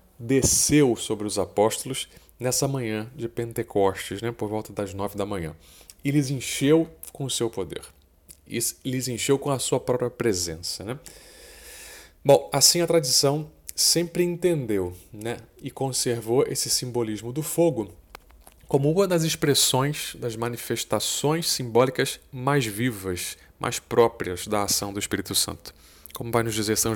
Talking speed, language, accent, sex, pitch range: 140 wpm, Portuguese, Brazilian, male, 100-135 Hz